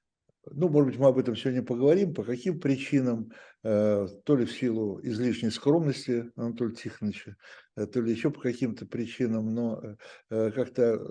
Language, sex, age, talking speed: Russian, male, 60-79, 145 wpm